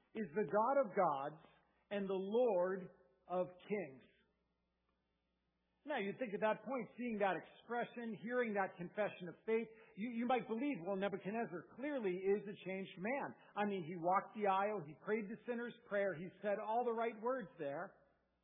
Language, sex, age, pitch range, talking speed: English, male, 50-69, 185-230 Hz, 175 wpm